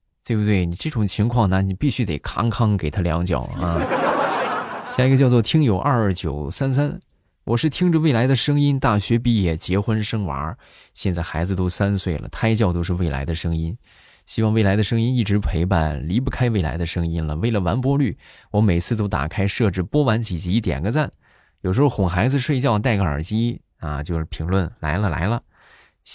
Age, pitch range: 20-39, 85-115 Hz